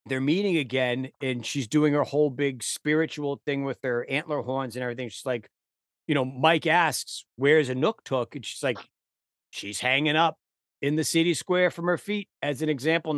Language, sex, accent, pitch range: English, male, American, 120-160 Hz